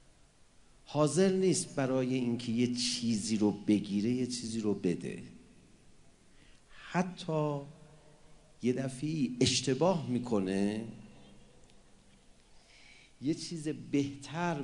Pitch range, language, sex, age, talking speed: 115-165 Hz, English, male, 50-69, 80 wpm